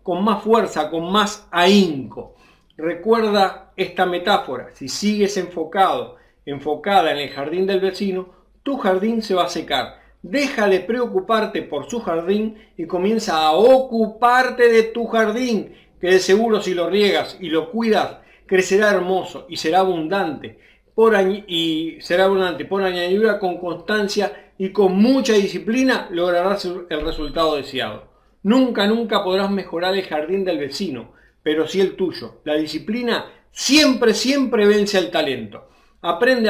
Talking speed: 145 wpm